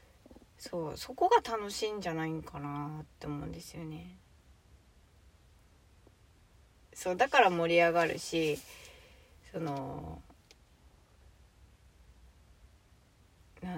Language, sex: Japanese, female